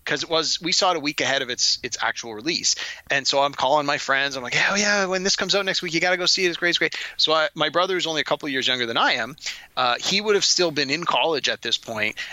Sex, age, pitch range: male, 30-49, 150-225 Hz